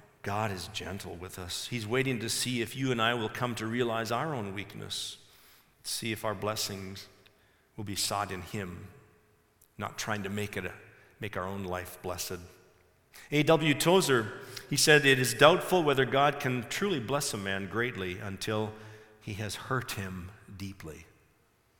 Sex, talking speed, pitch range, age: male, 160 wpm, 100-130 Hz, 50-69